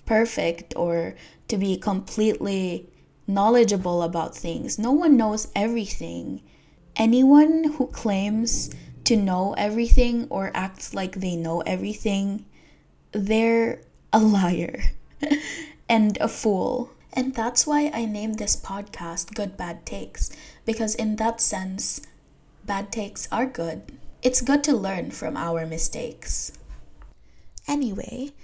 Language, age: English, 10-29